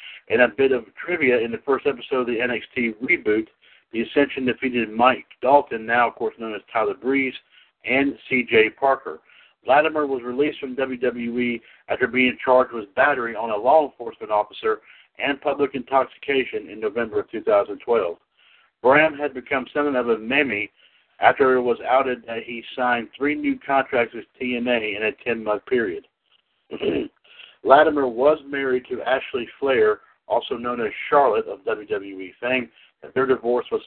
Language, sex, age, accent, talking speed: English, male, 60-79, American, 160 wpm